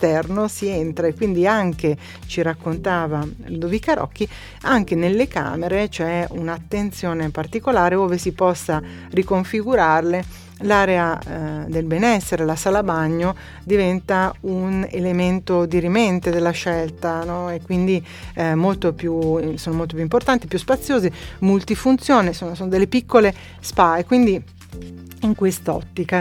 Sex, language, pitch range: female, Italian, 160-195 Hz